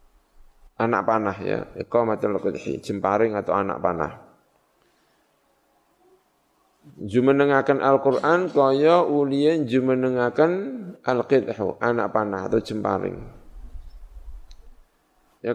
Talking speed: 75 wpm